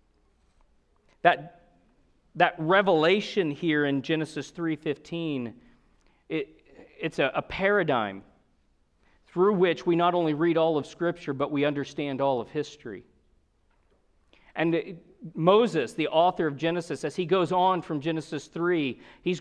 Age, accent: 40-59, American